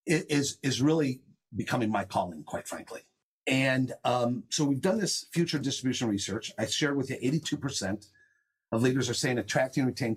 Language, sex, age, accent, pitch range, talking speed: English, male, 50-69, American, 120-160 Hz, 175 wpm